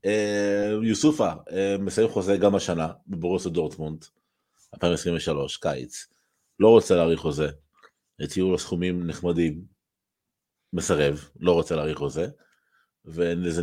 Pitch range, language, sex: 80-95 Hz, Hebrew, male